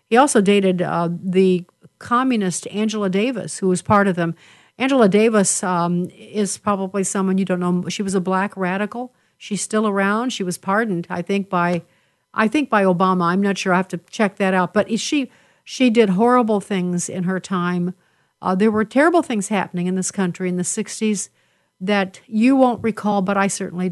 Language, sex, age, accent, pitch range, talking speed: English, female, 50-69, American, 185-220 Hz, 195 wpm